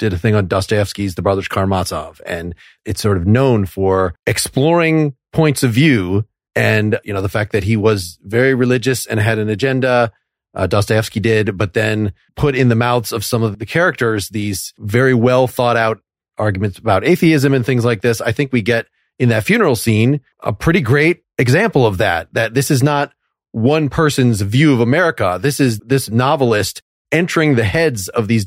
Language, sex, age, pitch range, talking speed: English, male, 30-49, 110-140 Hz, 190 wpm